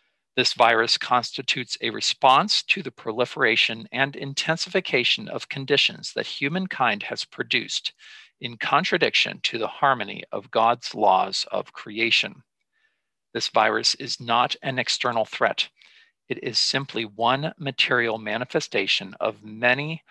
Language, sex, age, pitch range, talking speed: English, male, 50-69, 120-175 Hz, 120 wpm